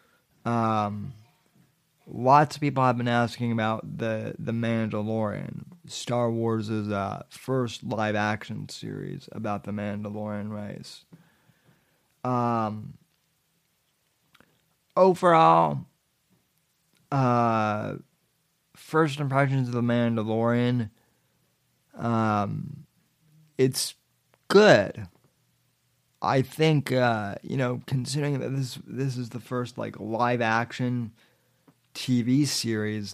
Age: 30-49